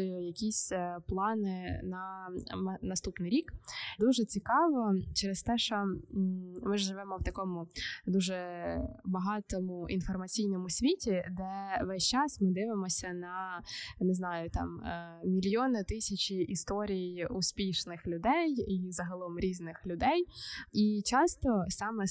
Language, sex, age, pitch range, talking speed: Ukrainian, female, 20-39, 175-215 Hz, 105 wpm